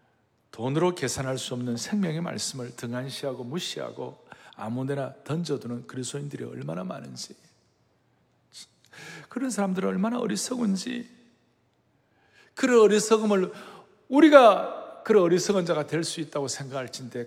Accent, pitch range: native, 145-215 Hz